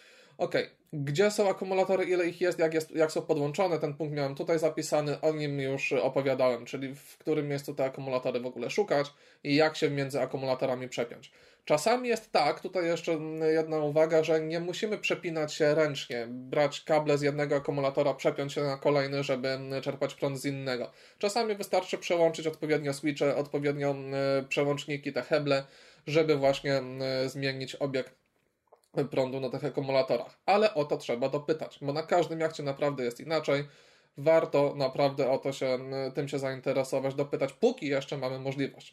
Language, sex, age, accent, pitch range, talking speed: Polish, male, 20-39, native, 135-160 Hz, 160 wpm